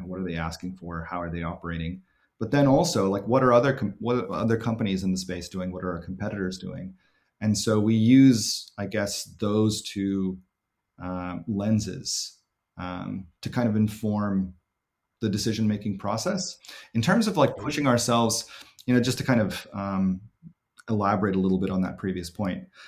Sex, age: male, 30-49